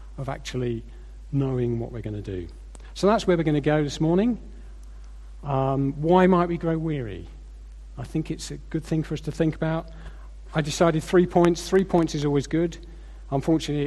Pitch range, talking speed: 115-165 Hz, 190 wpm